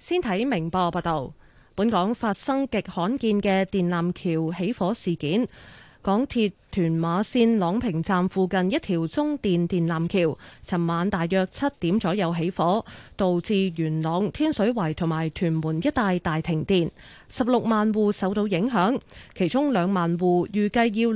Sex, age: female, 20-39